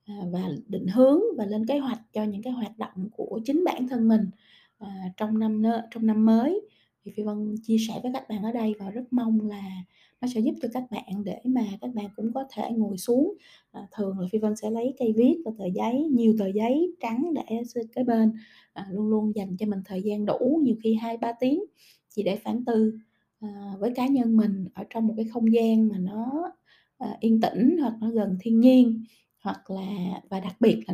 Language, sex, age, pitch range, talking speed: Vietnamese, female, 20-39, 205-240 Hz, 225 wpm